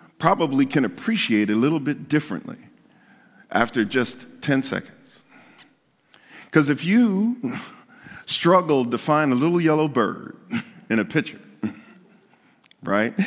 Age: 50-69